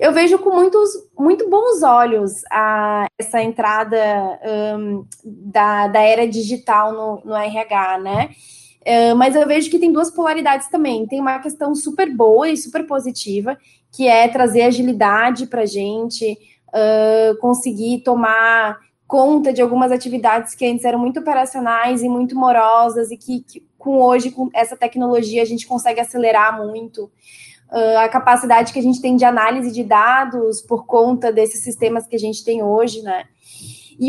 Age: 20-39